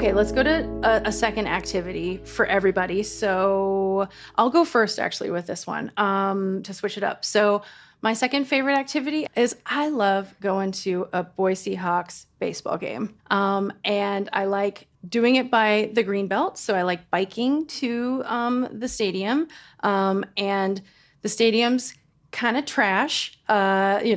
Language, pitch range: English, 195-225 Hz